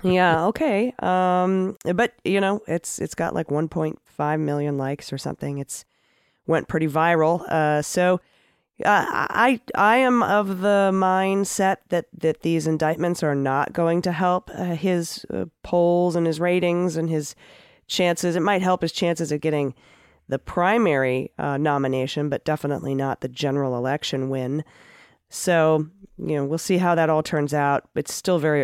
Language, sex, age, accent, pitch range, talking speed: English, female, 30-49, American, 140-180 Hz, 165 wpm